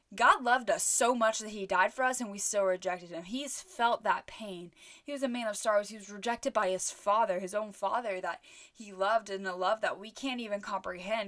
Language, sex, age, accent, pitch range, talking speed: English, female, 10-29, American, 195-250 Hz, 240 wpm